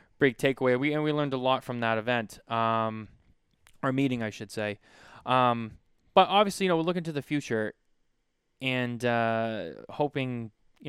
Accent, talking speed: American, 170 wpm